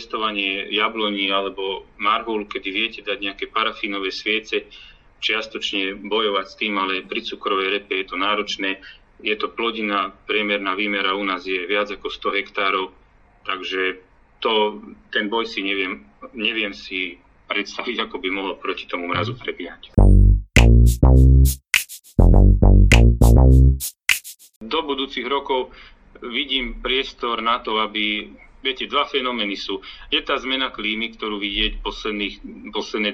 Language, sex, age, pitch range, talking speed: Slovak, male, 40-59, 100-110 Hz, 125 wpm